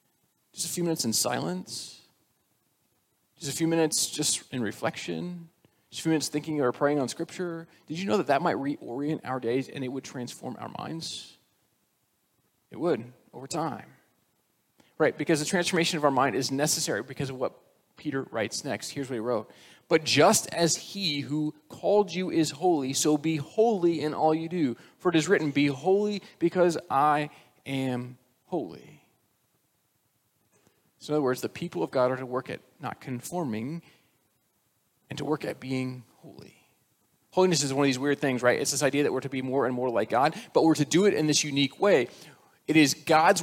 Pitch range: 135-170 Hz